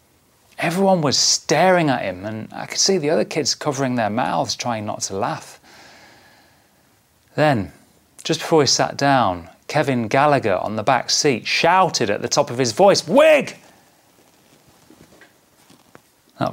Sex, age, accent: male, 30-49, British